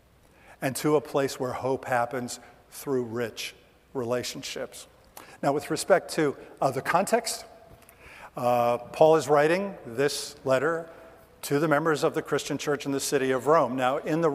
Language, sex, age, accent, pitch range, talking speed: English, male, 50-69, American, 130-155 Hz, 160 wpm